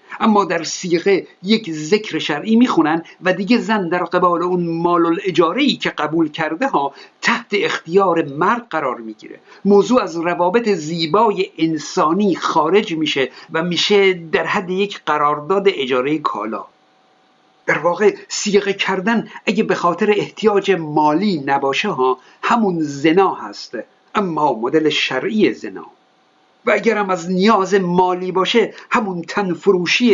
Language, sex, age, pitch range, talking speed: Persian, male, 50-69, 165-220 Hz, 130 wpm